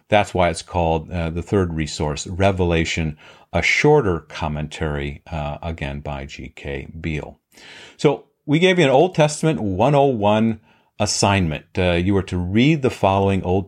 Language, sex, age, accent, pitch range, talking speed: English, male, 50-69, American, 85-110 Hz, 150 wpm